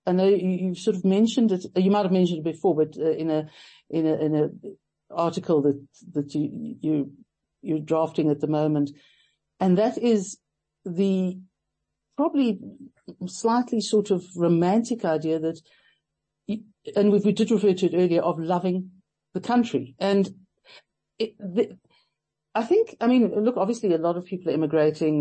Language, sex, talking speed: English, female, 165 wpm